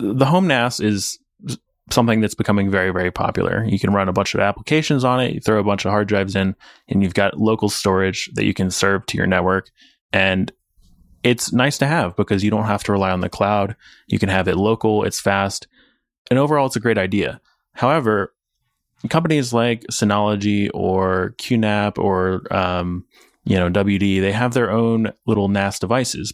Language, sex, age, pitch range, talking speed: English, male, 20-39, 95-115 Hz, 190 wpm